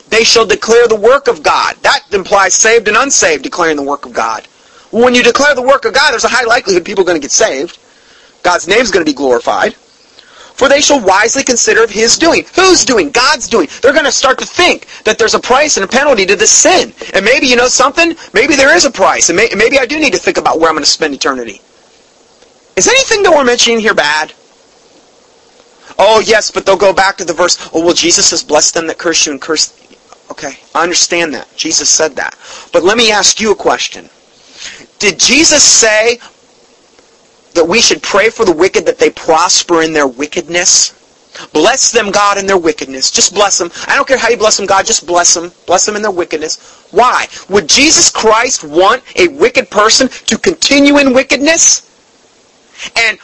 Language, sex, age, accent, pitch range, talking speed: English, male, 30-49, American, 195-285 Hz, 215 wpm